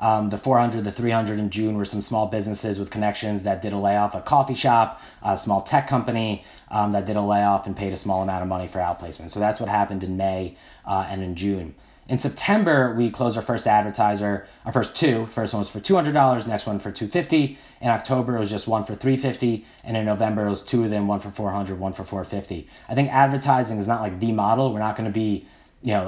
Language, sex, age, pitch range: English, male, 30-49, 100-120 Hz